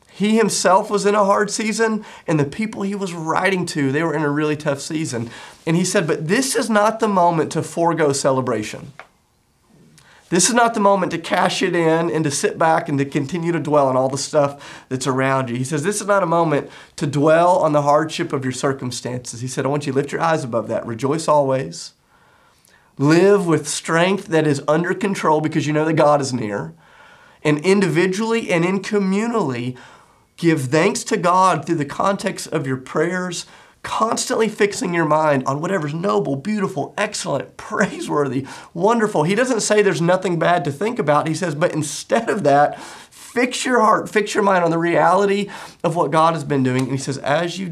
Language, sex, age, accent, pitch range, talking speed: English, male, 30-49, American, 145-195 Hz, 200 wpm